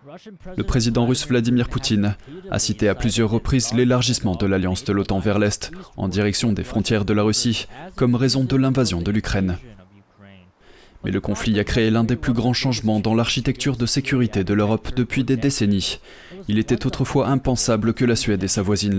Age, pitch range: 20-39, 105-125 Hz